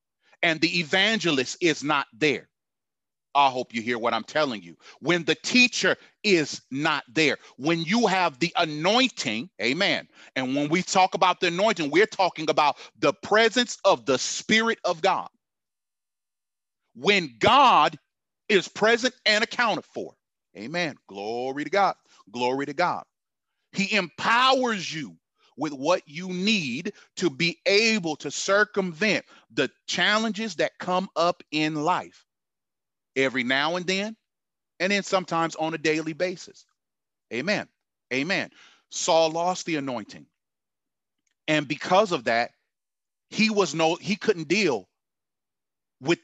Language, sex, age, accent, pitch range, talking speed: English, male, 40-59, American, 145-200 Hz, 130 wpm